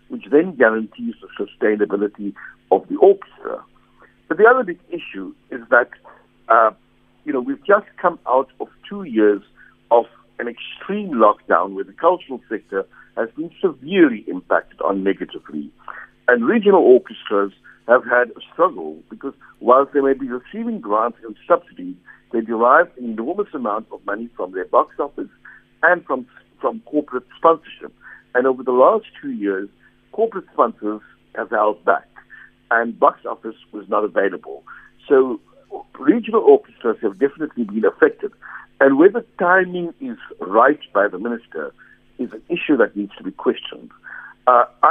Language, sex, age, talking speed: English, male, 60-79, 150 wpm